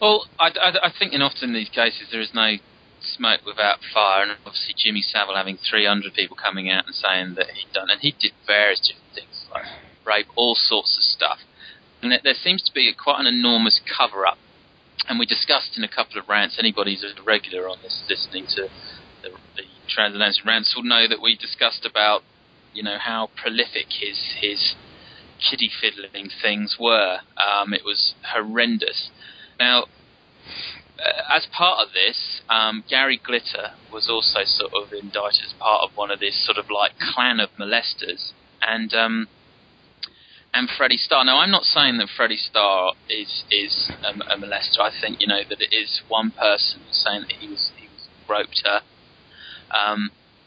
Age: 20-39